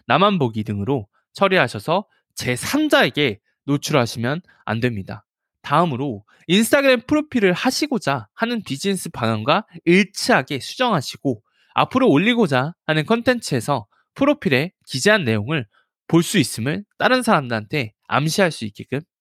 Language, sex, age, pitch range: Korean, male, 20-39, 120-205 Hz